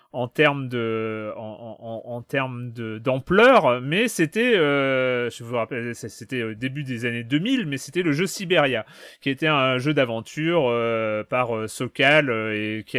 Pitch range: 135-190 Hz